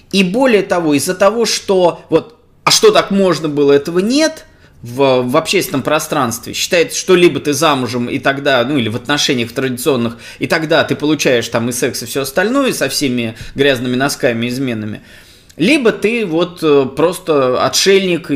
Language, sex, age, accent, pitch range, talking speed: Russian, male, 20-39, native, 135-185 Hz, 165 wpm